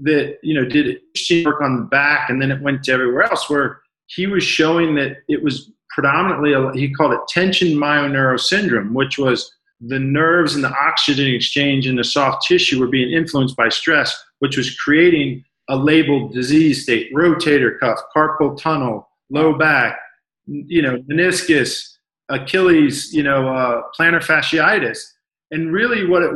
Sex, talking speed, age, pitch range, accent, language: male, 165 wpm, 40-59, 135-160 Hz, American, English